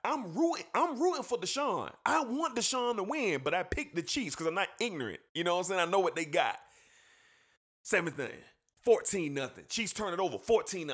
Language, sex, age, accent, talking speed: English, male, 30-49, American, 215 wpm